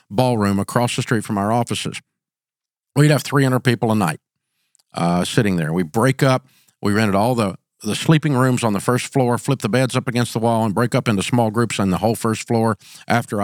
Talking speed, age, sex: 220 wpm, 50-69, male